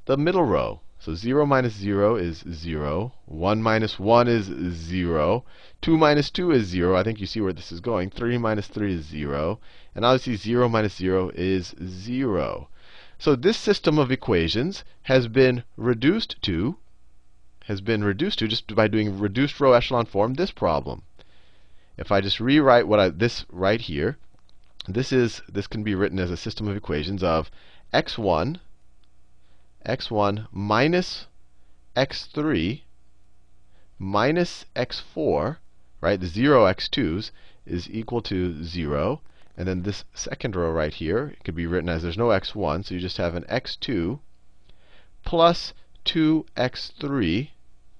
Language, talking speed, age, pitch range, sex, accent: English, 150 wpm, 30-49, 85-120 Hz, male, American